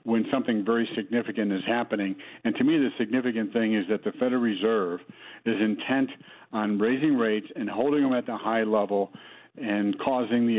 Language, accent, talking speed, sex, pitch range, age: English, American, 180 wpm, male, 105-125 Hz, 60-79